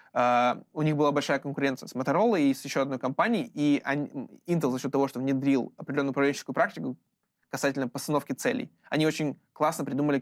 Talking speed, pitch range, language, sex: 170 wpm, 135-160 Hz, Russian, male